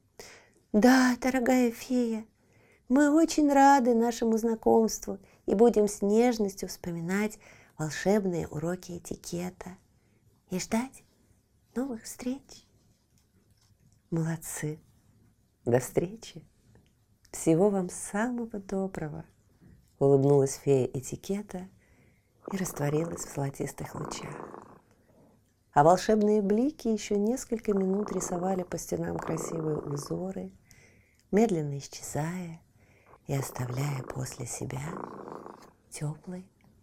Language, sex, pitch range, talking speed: Russian, female, 125-205 Hz, 85 wpm